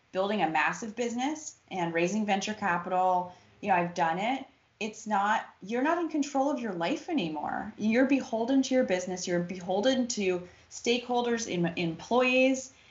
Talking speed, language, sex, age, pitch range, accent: 160 wpm, English, female, 20-39, 175-230 Hz, American